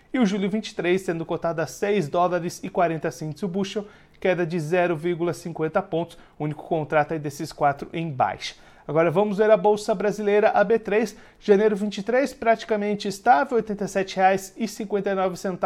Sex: male